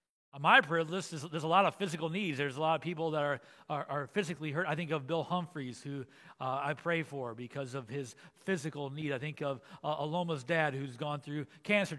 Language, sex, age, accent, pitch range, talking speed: English, male, 40-59, American, 145-185 Hz, 230 wpm